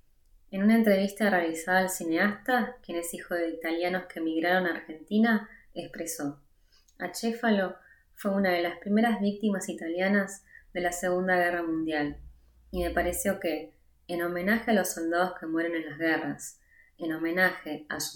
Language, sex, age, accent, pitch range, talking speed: Italian, female, 20-39, Argentinian, 160-190 Hz, 155 wpm